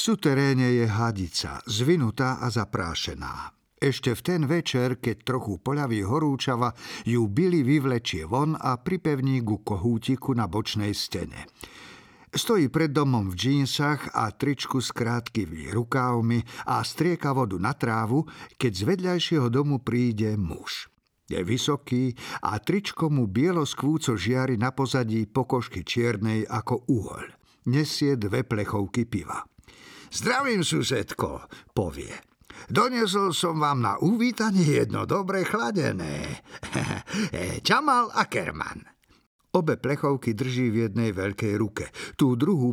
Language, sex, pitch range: Slovak, male, 110-145 Hz